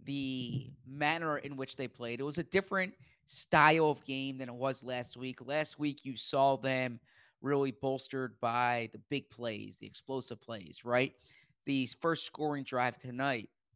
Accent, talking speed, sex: American, 160 wpm, male